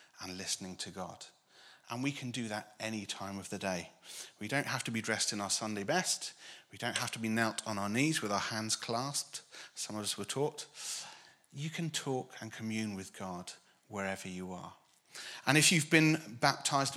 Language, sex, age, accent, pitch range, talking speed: English, male, 30-49, British, 105-140 Hz, 200 wpm